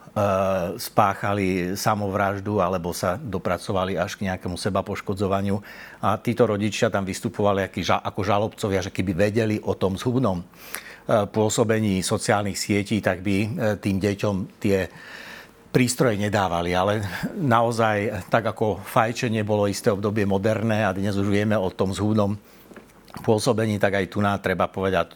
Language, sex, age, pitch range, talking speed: Slovak, male, 60-79, 95-110 Hz, 130 wpm